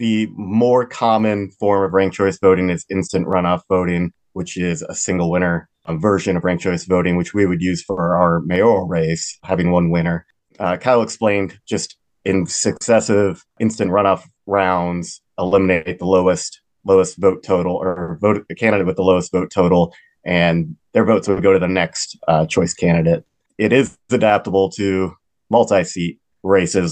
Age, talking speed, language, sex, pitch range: 30-49, 165 wpm, English, male, 90-100 Hz